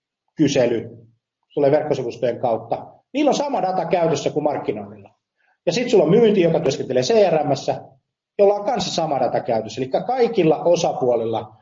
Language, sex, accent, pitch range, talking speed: Finnish, male, native, 115-175 Hz, 145 wpm